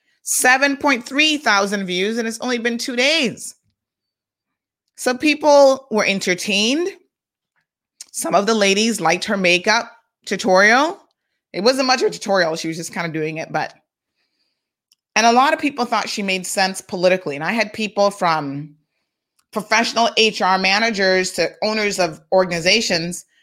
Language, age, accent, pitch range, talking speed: English, 30-49, American, 190-245 Hz, 145 wpm